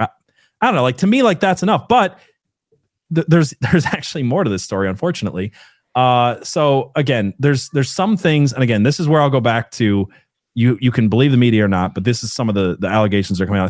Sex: male